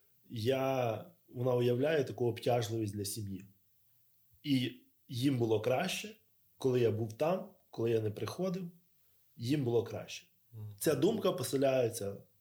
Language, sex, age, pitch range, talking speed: Ukrainian, male, 20-39, 115-160 Hz, 120 wpm